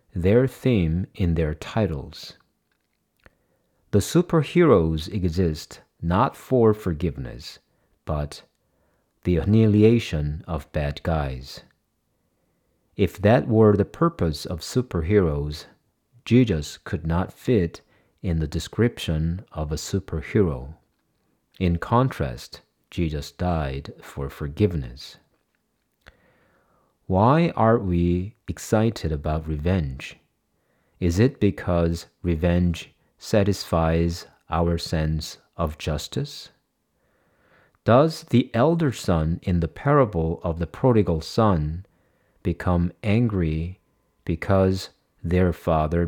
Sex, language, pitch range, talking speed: male, English, 80-105 Hz, 90 wpm